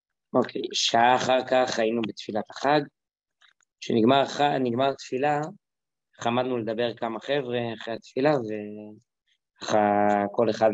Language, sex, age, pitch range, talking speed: English, male, 20-39, 110-130 Hz, 125 wpm